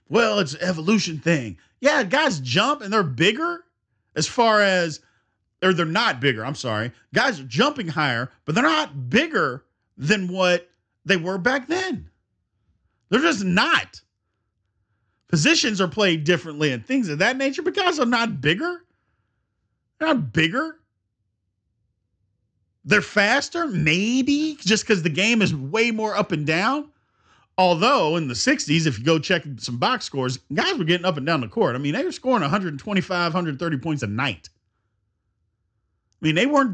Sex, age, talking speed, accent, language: male, 40-59, 165 wpm, American, English